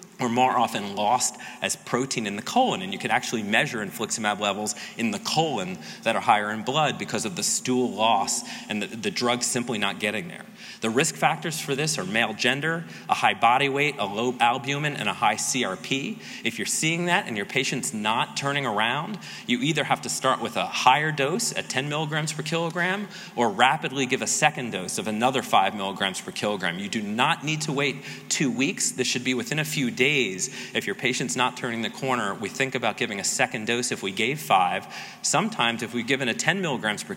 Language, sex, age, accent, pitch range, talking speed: English, male, 30-49, American, 110-145 Hz, 215 wpm